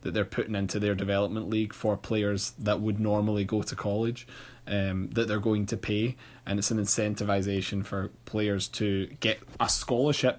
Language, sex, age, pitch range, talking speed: English, male, 20-39, 100-115 Hz, 180 wpm